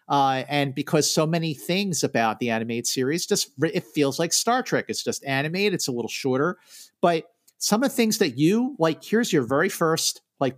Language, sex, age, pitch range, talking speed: English, male, 50-69, 125-160 Hz, 200 wpm